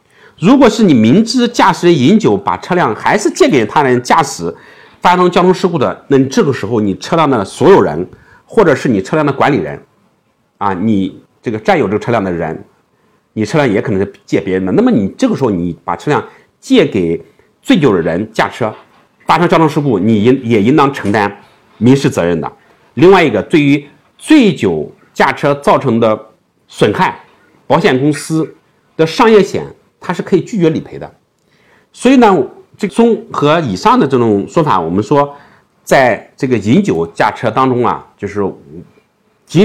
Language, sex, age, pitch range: Chinese, male, 50-69, 110-180 Hz